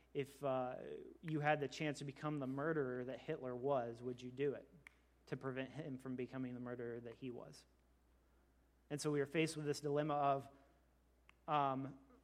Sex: male